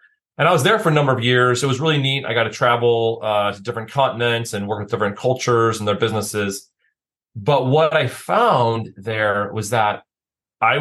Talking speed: 205 wpm